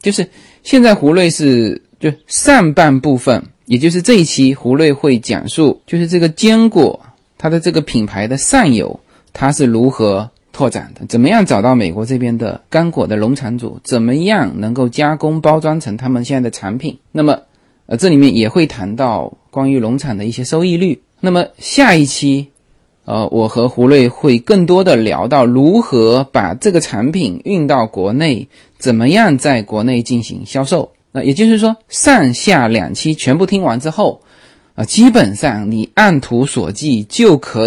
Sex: male